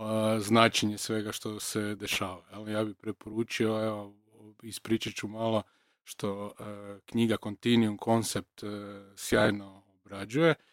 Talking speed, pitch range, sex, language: 100 wpm, 105-120 Hz, male, Croatian